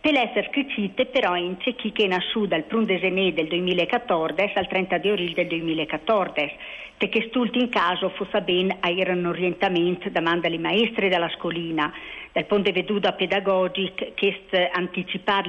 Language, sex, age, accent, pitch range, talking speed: Italian, female, 50-69, native, 170-210 Hz, 155 wpm